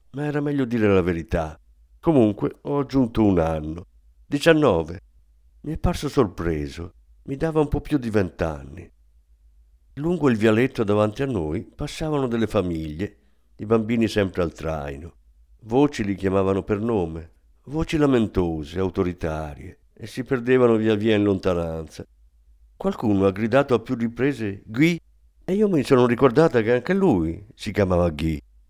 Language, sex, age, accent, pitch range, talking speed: Italian, male, 50-69, native, 80-130 Hz, 145 wpm